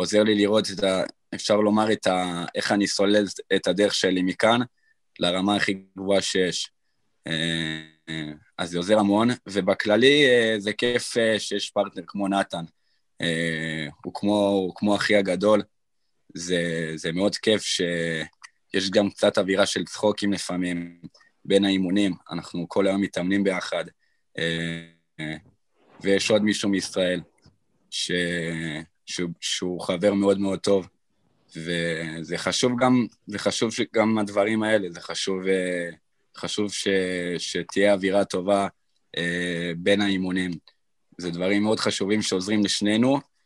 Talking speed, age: 115 wpm, 20-39